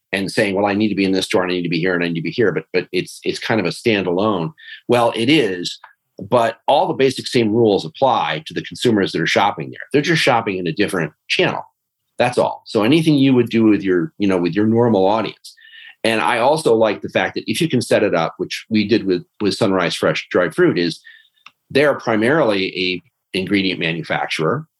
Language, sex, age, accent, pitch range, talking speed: English, male, 40-59, American, 95-130 Hz, 235 wpm